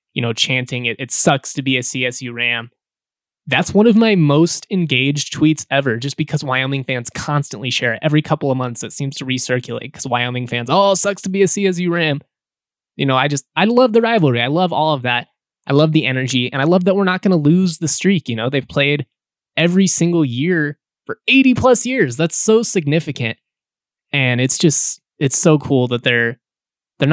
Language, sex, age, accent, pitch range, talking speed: English, male, 20-39, American, 120-160 Hz, 210 wpm